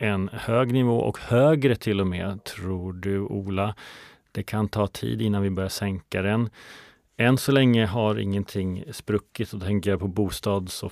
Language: Swedish